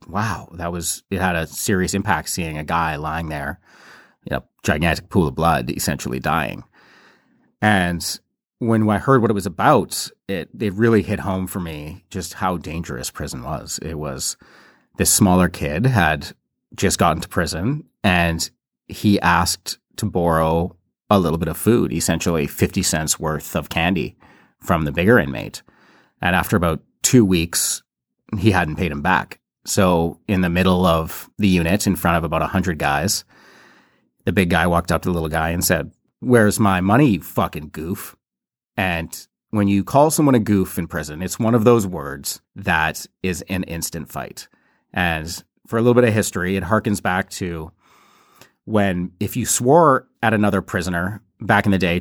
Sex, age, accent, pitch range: male, 30-49, American, 80-105 Hz